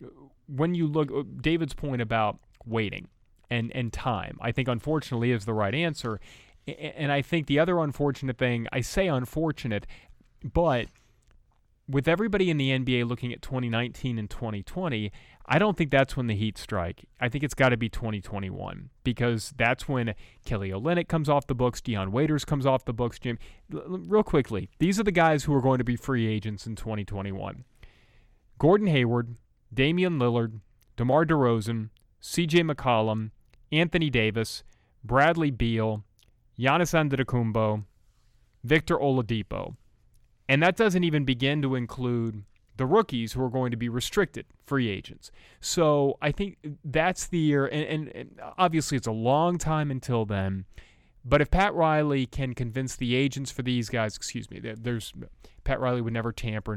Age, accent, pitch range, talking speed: 30-49, American, 110-150 Hz, 160 wpm